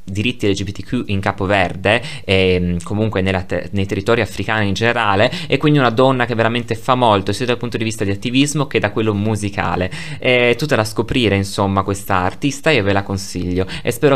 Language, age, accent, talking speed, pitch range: Italian, 20-39, native, 195 wpm, 100-135 Hz